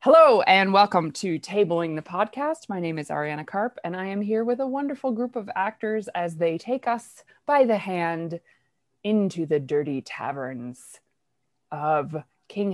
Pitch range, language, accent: 160-230 Hz, English, American